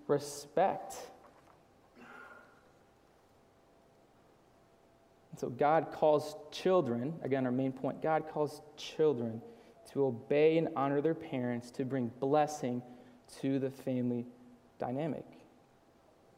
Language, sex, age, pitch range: English, male, 20-39, 130-165 Hz